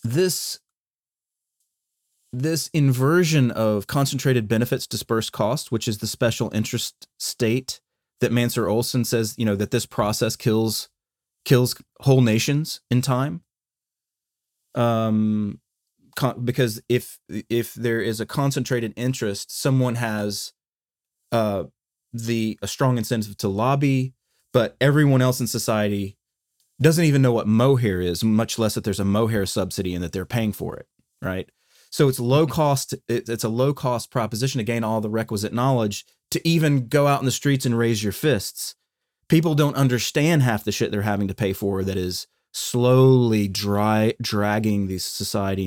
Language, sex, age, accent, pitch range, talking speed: English, male, 30-49, American, 105-130 Hz, 155 wpm